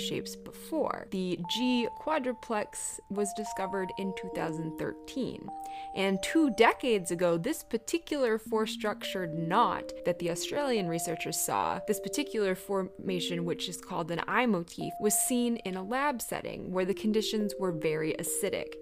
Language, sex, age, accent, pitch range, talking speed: English, female, 20-39, American, 175-230 Hz, 140 wpm